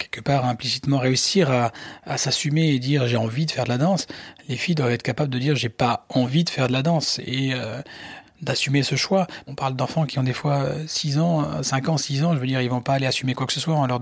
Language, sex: French, male